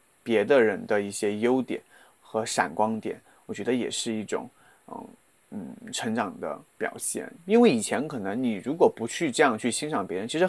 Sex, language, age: male, Chinese, 30-49